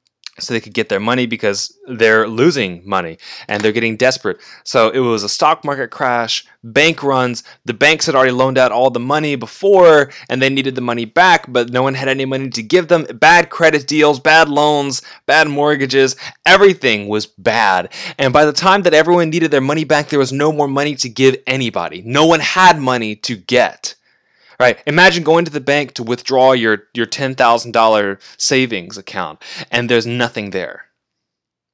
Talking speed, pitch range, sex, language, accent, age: 190 wpm, 115-150 Hz, male, English, American, 20-39